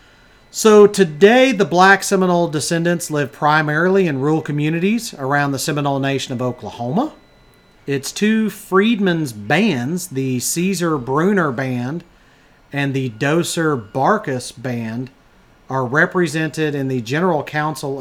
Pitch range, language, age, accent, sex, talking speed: 135-185 Hz, English, 40-59, American, male, 120 wpm